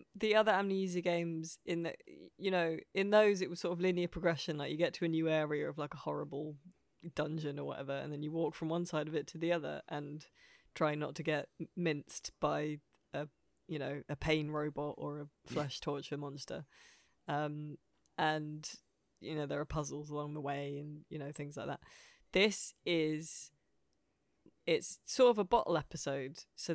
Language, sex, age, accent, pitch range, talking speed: English, female, 20-39, British, 145-170 Hz, 190 wpm